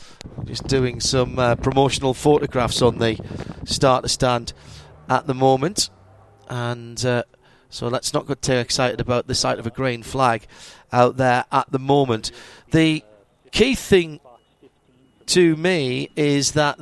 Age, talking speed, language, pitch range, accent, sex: 40-59, 145 wpm, English, 130-160 Hz, British, male